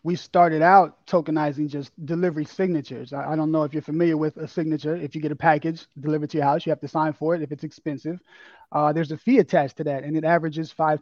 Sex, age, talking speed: male, 20-39, 250 wpm